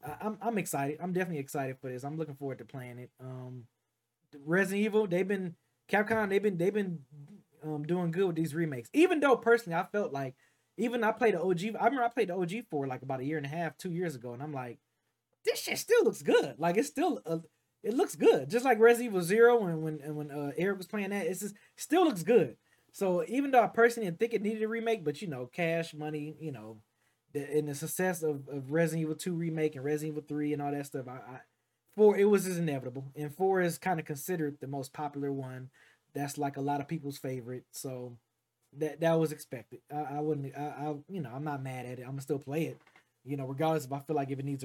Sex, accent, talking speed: male, American, 250 wpm